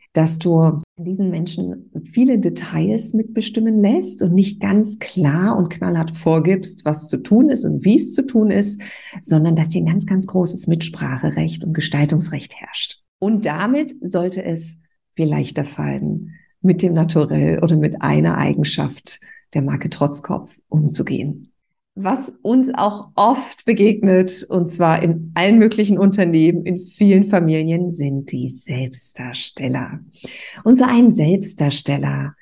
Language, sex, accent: German, female, German